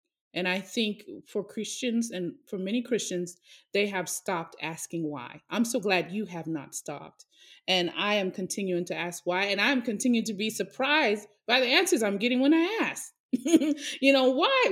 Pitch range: 195-260 Hz